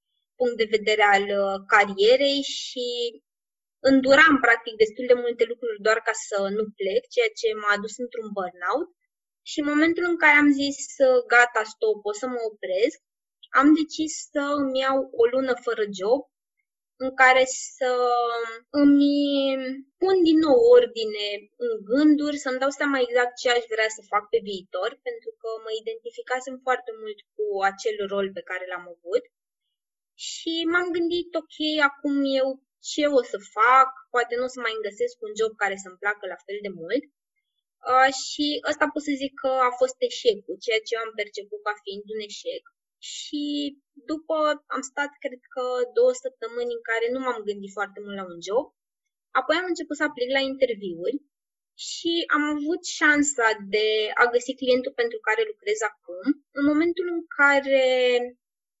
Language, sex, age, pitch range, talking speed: Romanian, female, 20-39, 230-350 Hz, 165 wpm